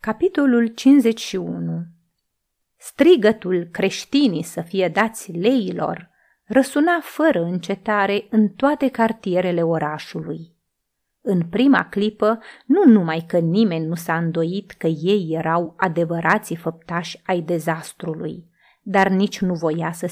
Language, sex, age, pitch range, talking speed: Romanian, female, 30-49, 170-245 Hz, 110 wpm